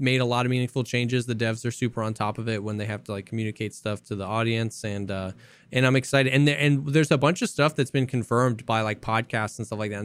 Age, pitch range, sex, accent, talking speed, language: 10-29, 115-140 Hz, male, American, 285 wpm, English